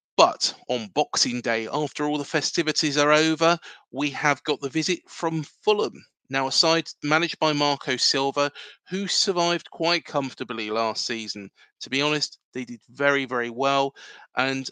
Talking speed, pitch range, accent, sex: 160 wpm, 130-170 Hz, British, male